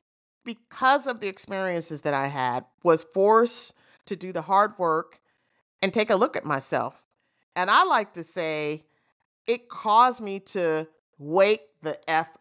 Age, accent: 50-69, American